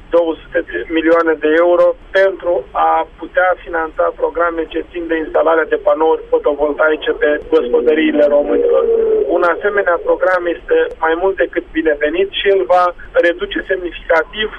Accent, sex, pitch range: native, male, 160-200 Hz